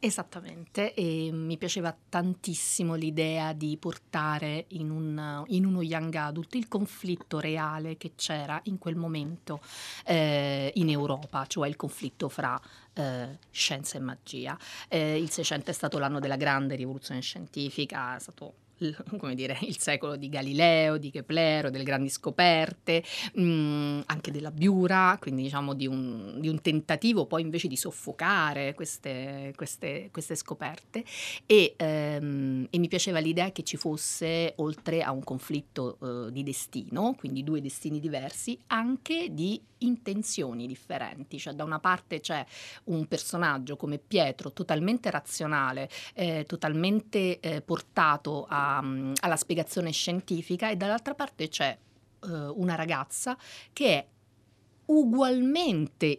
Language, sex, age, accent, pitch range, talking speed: Italian, female, 30-49, native, 145-180 Hz, 130 wpm